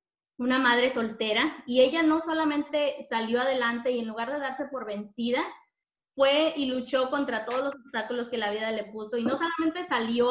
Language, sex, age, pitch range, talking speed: Spanish, female, 20-39, 230-280 Hz, 185 wpm